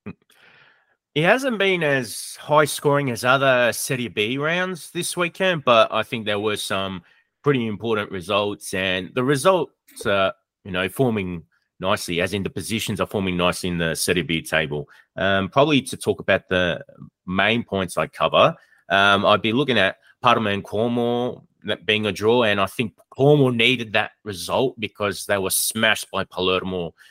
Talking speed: 170 wpm